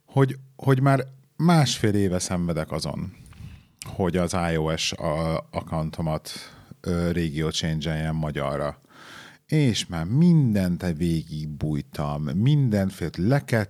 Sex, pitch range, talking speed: male, 80-120 Hz, 100 wpm